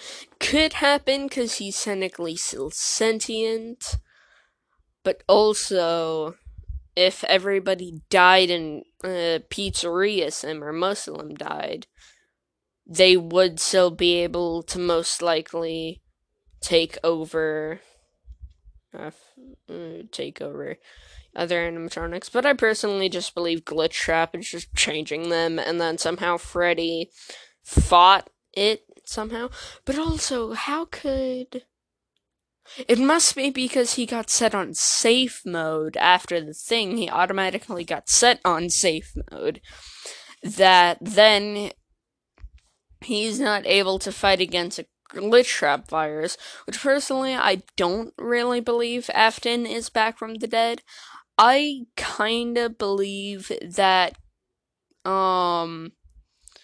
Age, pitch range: 10-29, 170-230 Hz